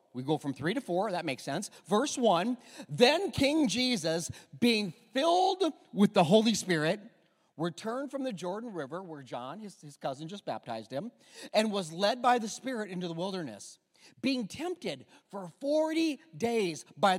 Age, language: 40-59, English